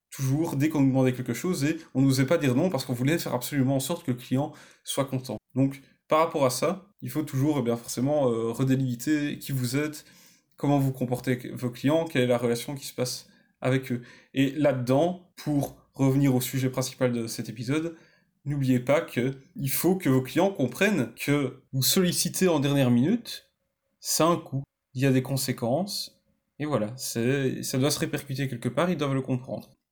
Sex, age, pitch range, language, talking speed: male, 20-39, 130-155 Hz, French, 205 wpm